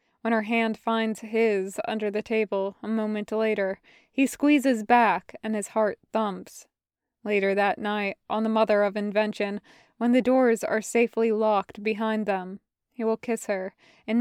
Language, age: English, 20-39